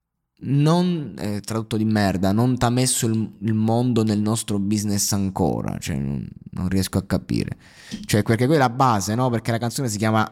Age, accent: 20-39, native